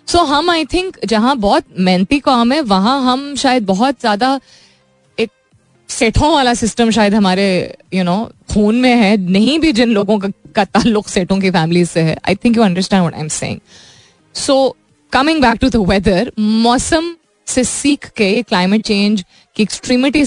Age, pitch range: 20-39, 185-255 Hz